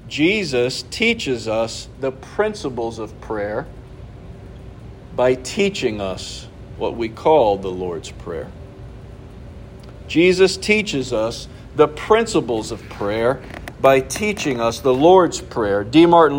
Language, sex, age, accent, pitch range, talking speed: English, male, 50-69, American, 125-180 Hz, 115 wpm